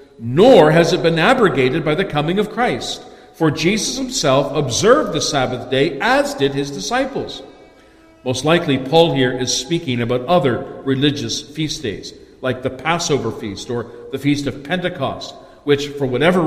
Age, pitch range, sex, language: 50-69, 130-175 Hz, male, English